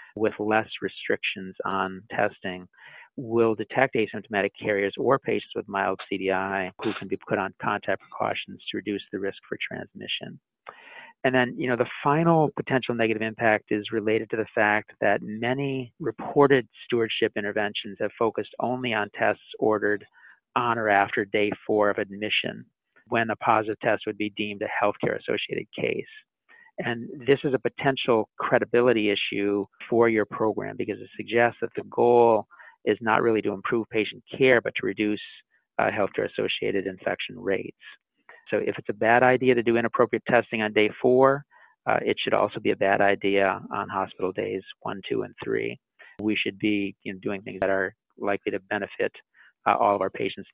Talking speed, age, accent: 175 wpm, 50-69, American